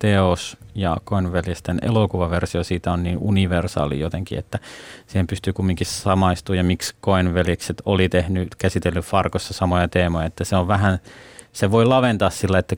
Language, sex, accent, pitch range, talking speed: Finnish, male, native, 85-105 Hz, 150 wpm